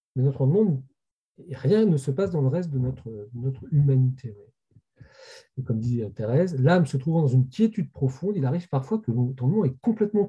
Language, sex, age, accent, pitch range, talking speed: French, male, 40-59, French, 130-180 Hz, 185 wpm